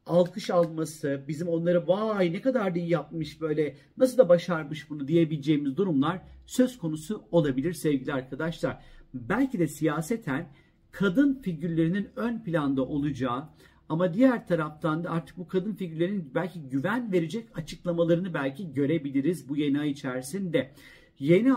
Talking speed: 135 wpm